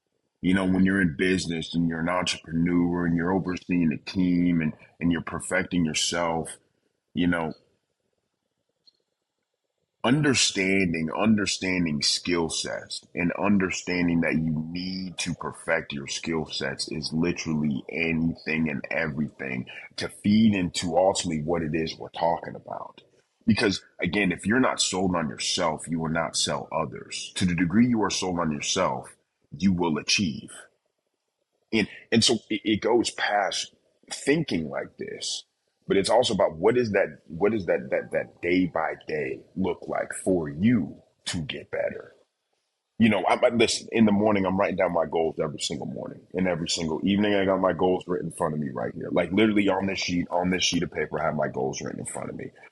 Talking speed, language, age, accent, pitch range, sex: 180 wpm, English, 30-49, American, 80-95 Hz, male